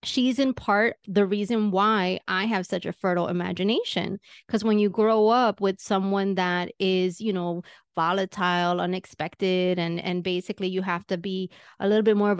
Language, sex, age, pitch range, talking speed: English, female, 30-49, 185-220 Hz, 180 wpm